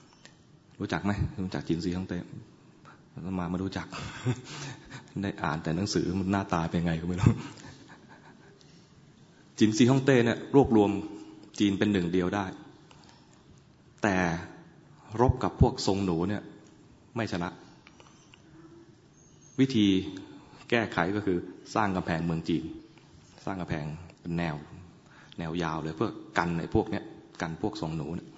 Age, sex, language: 20-39, male, English